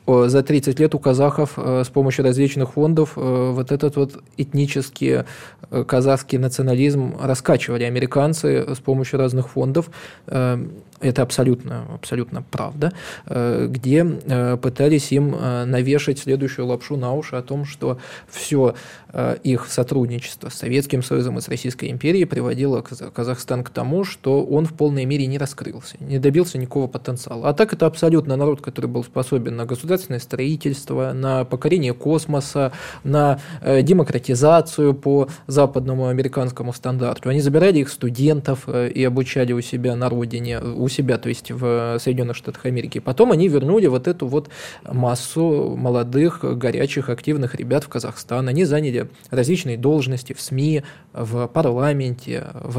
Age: 20-39